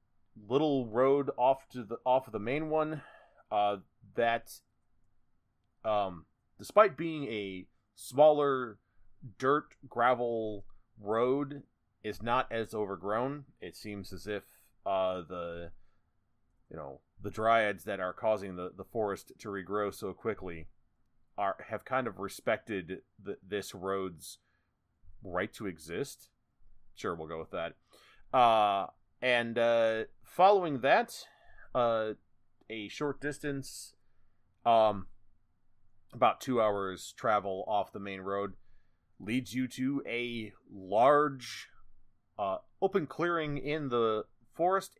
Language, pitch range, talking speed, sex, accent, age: English, 100-130 Hz, 115 wpm, male, American, 30-49